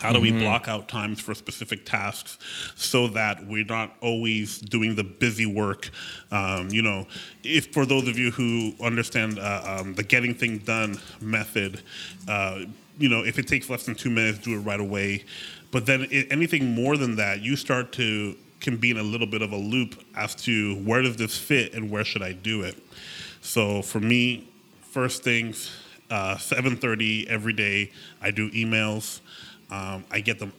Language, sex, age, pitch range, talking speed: English, male, 30-49, 105-120 Hz, 185 wpm